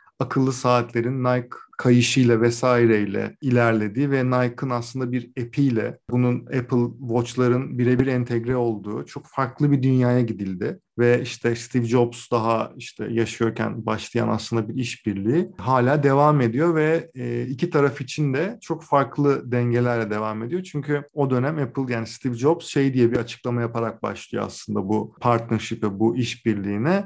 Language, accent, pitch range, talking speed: Turkish, native, 120-145 Hz, 145 wpm